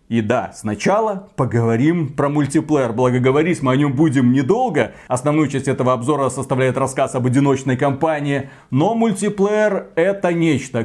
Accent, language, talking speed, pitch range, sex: native, Russian, 140 wpm, 160-210 Hz, male